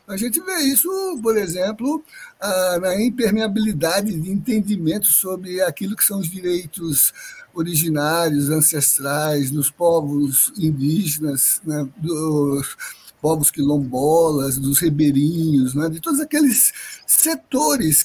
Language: Portuguese